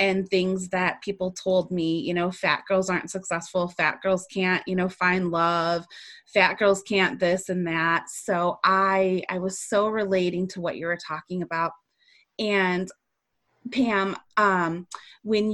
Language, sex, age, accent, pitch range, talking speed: English, female, 20-39, American, 185-255 Hz, 160 wpm